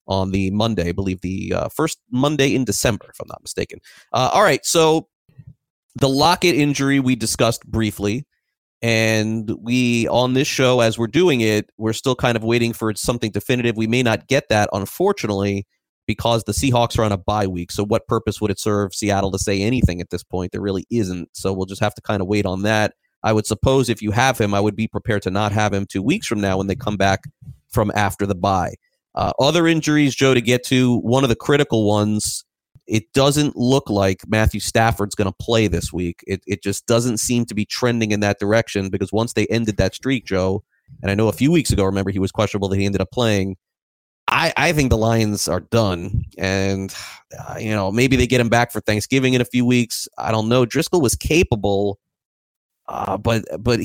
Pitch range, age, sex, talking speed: 100-125 Hz, 30-49, male, 220 wpm